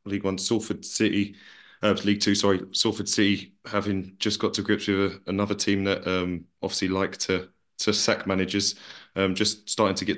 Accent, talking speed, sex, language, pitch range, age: British, 190 wpm, male, English, 95-105 Hz, 20-39